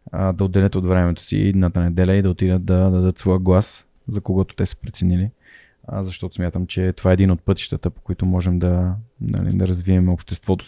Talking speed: 200 wpm